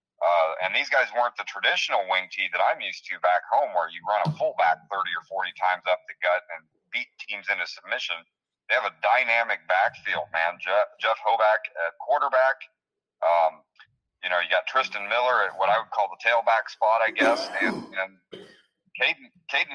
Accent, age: American, 30-49